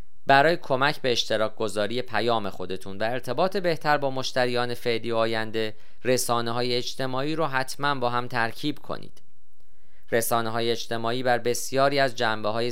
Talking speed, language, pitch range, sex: 130 wpm, Persian, 110-135 Hz, male